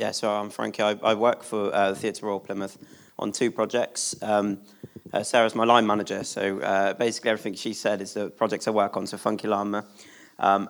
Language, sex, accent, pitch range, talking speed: English, male, British, 100-110 Hz, 215 wpm